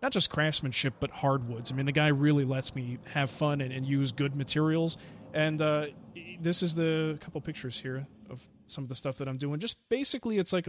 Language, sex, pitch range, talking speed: English, male, 130-160 Hz, 220 wpm